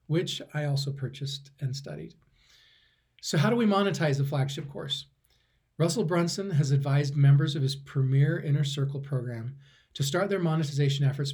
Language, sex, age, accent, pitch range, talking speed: English, male, 40-59, American, 135-160 Hz, 160 wpm